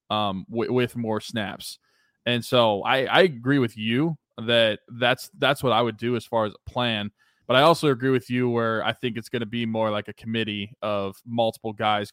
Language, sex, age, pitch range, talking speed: English, male, 20-39, 105-125 Hz, 220 wpm